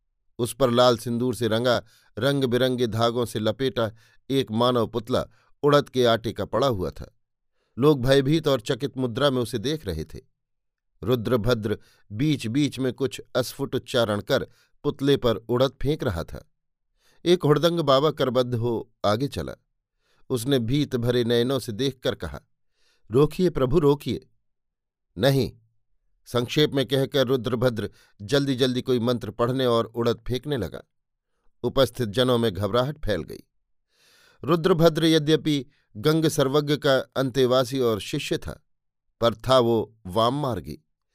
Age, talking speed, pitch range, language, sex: 50-69, 140 wpm, 115-135 Hz, Hindi, male